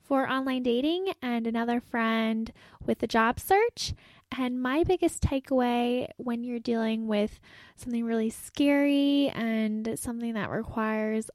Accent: American